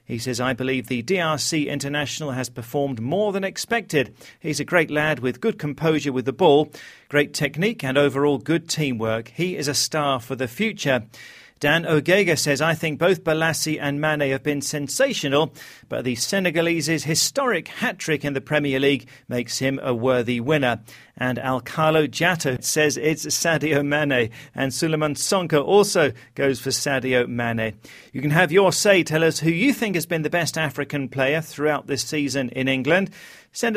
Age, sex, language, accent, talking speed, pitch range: 40-59, male, English, British, 175 wpm, 135-170 Hz